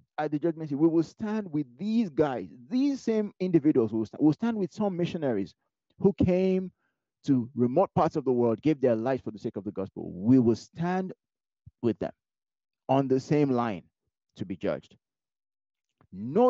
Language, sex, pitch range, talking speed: English, male, 105-155 Hz, 180 wpm